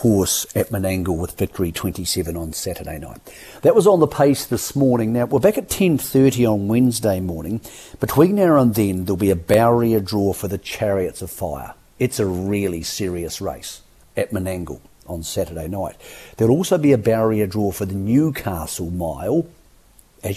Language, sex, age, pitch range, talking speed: English, male, 50-69, 95-120 Hz, 175 wpm